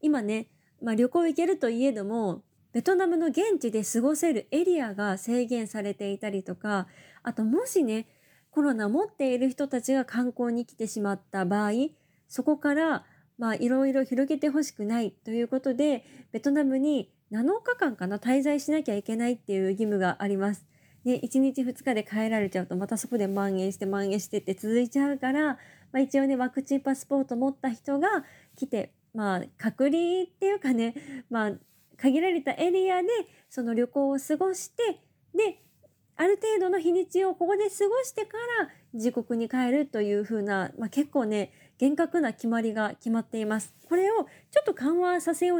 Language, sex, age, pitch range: Japanese, female, 20-39, 220-300 Hz